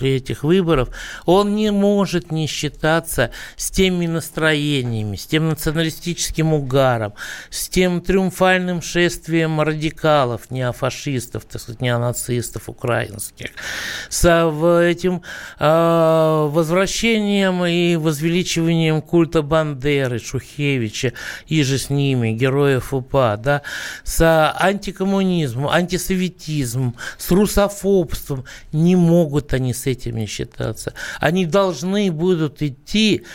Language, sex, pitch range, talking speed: Russian, male, 135-175 Hz, 95 wpm